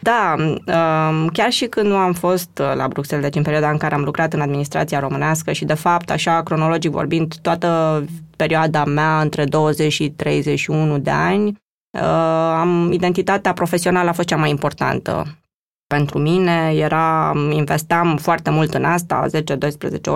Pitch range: 155-180 Hz